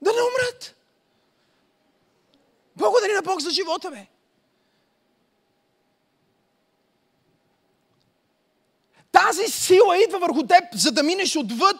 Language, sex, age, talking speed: Bulgarian, male, 40-59, 90 wpm